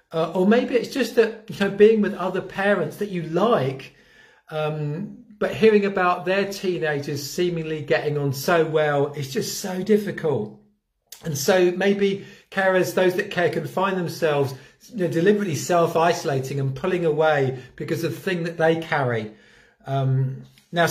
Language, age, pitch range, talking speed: English, 40-59, 155-200 Hz, 160 wpm